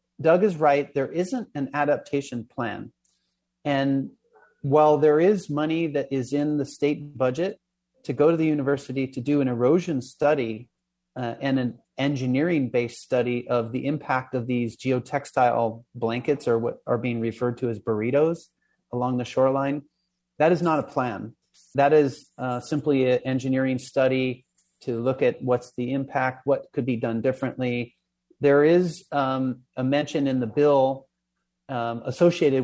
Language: English